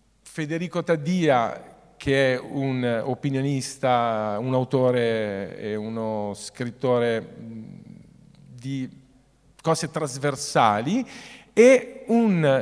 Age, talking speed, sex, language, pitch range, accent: 40-59, 75 wpm, male, Italian, 135-185 Hz, native